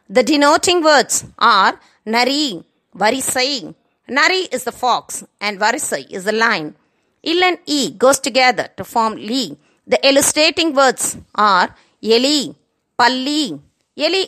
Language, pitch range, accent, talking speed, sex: Tamil, 230-295 Hz, native, 125 wpm, female